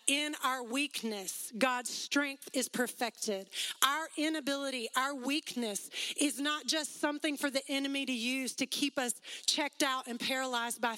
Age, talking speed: 30-49, 155 wpm